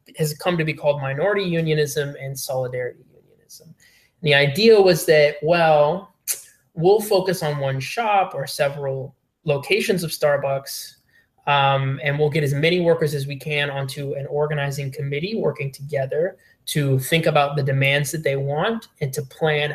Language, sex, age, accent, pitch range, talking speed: English, male, 20-39, American, 140-165 Hz, 160 wpm